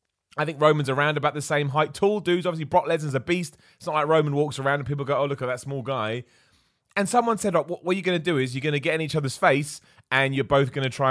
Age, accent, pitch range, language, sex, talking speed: 30-49, British, 115-170 Hz, English, male, 295 wpm